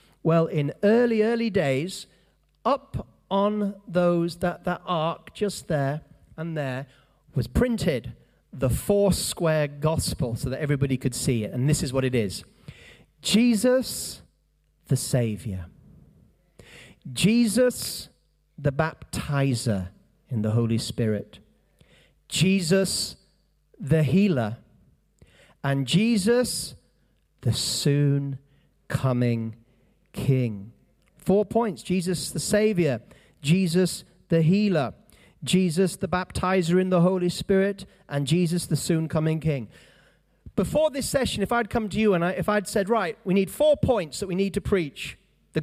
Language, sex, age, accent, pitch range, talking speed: English, male, 40-59, British, 145-200 Hz, 130 wpm